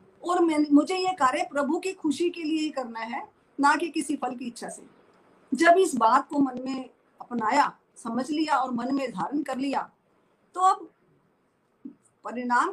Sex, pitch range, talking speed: female, 255-330 Hz, 180 wpm